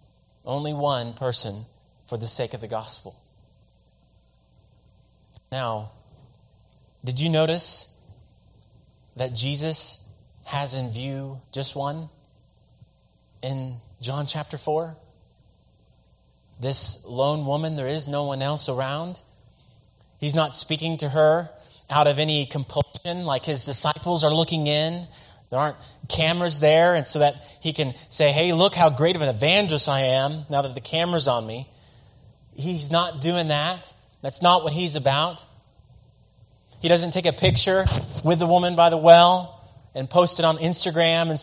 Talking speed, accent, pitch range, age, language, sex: 145 wpm, American, 125-165 Hz, 30-49, English, male